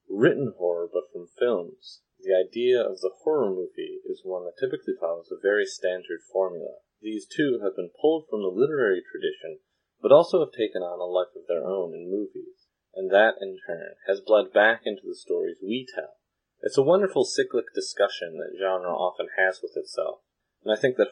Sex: male